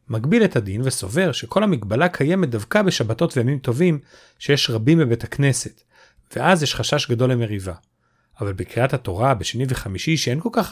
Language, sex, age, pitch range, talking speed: Hebrew, male, 40-59, 115-170 Hz, 155 wpm